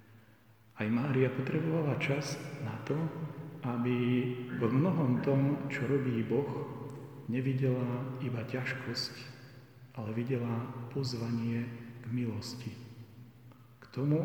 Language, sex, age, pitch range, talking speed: Slovak, male, 40-59, 120-140 Hz, 95 wpm